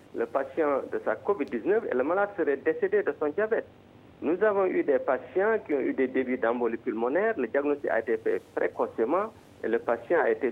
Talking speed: 205 wpm